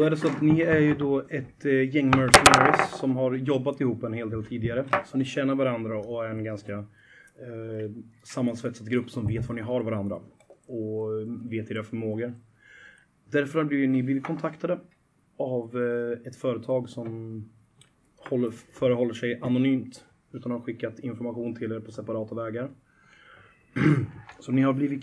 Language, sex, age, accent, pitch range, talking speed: Swedish, male, 30-49, native, 115-130 Hz, 155 wpm